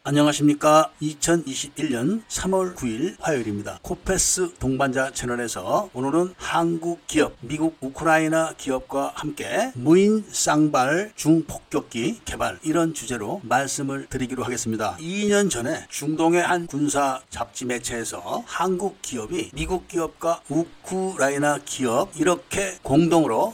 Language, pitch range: Korean, 130-180 Hz